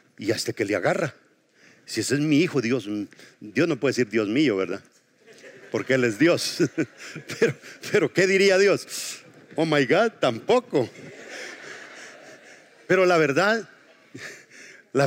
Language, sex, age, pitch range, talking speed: English, male, 50-69, 155-210 Hz, 140 wpm